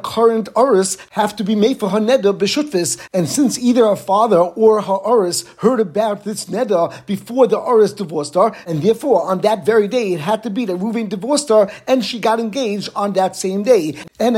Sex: male